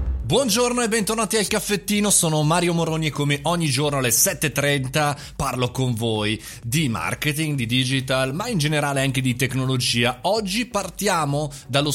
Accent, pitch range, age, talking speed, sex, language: native, 115-155 Hz, 30-49, 150 wpm, male, Italian